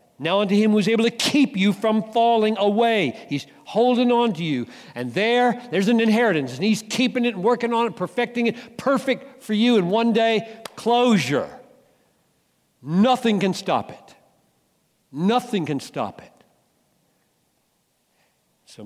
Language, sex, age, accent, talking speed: English, male, 60-79, American, 150 wpm